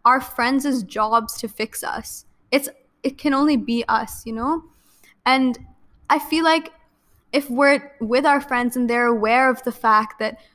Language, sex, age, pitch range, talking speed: English, female, 10-29, 220-270 Hz, 170 wpm